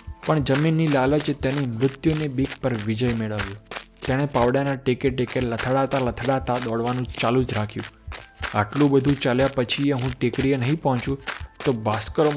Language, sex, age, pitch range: Gujarati, male, 20-39, 115-145 Hz